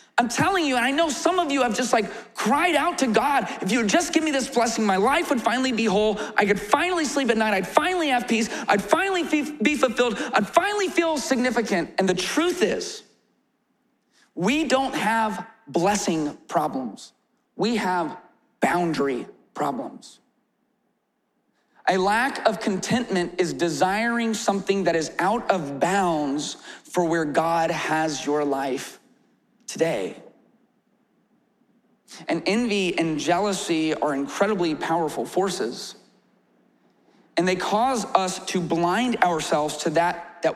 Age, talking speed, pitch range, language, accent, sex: 30-49, 145 wpm, 170-245 Hz, English, American, male